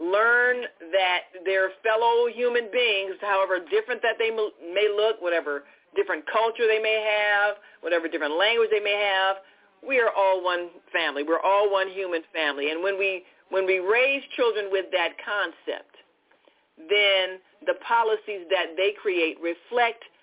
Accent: American